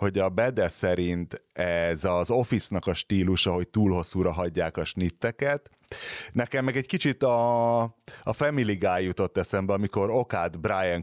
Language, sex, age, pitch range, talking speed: Hungarian, male, 30-49, 90-115 Hz, 150 wpm